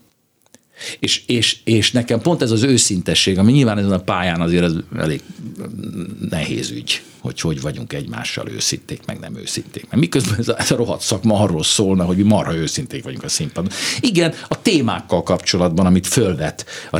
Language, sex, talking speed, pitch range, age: Hungarian, male, 175 wpm, 90-125 Hz, 60-79